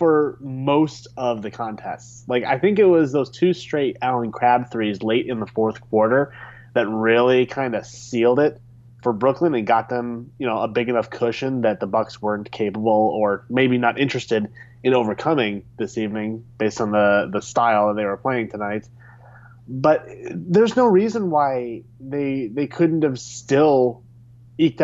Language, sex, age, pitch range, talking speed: English, male, 30-49, 115-140 Hz, 175 wpm